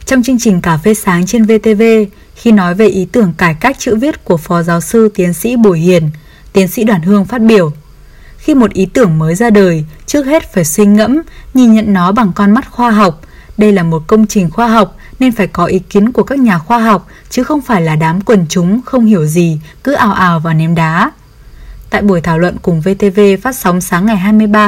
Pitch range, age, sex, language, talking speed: 175-225 Hz, 10-29, female, Vietnamese, 230 wpm